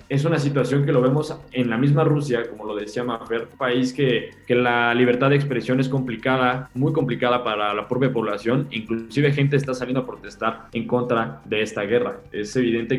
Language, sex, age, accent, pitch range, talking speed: Spanish, male, 20-39, Mexican, 115-135 Hz, 195 wpm